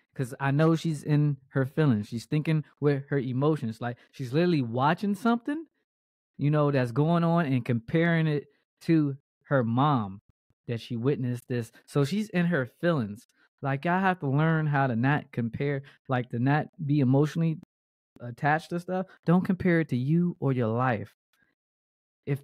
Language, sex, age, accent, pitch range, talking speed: English, male, 20-39, American, 130-175 Hz, 170 wpm